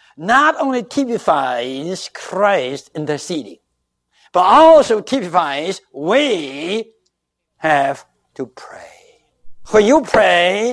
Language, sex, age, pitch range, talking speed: English, male, 60-79, 160-240 Hz, 85 wpm